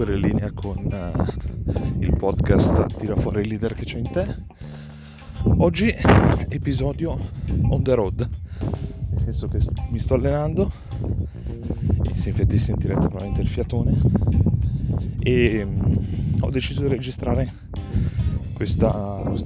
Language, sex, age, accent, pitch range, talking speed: Italian, male, 30-49, native, 100-120 Hz, 120 wpm